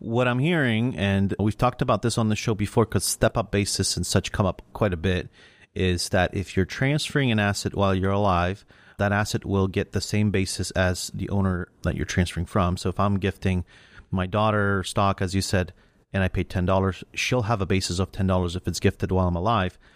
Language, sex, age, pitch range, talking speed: English, male, 30-49, 95-115 Hz, 215 wpm